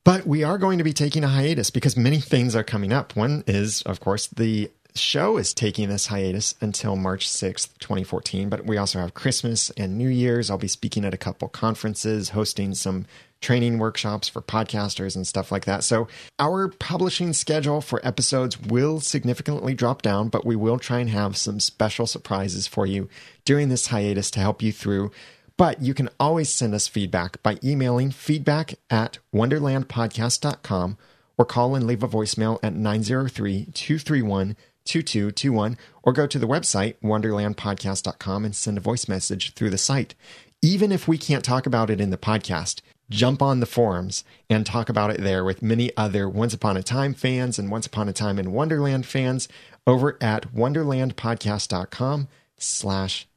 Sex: male